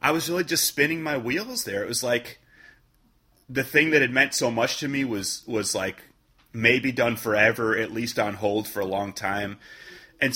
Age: 30-49